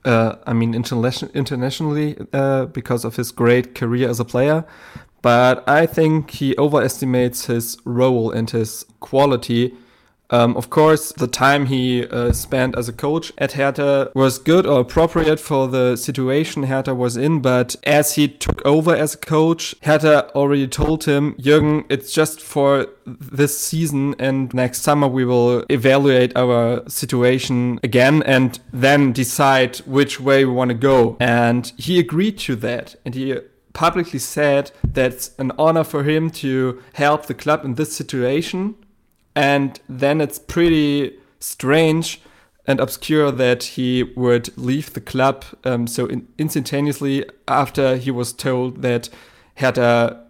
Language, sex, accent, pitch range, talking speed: English, male, German, 125-145 Hz, 150 wpm